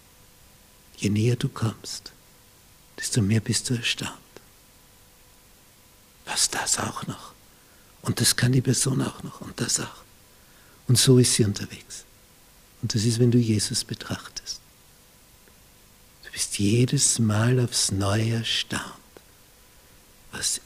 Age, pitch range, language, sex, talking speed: 60-79, 100-130 Hz, German, male, 125 wpm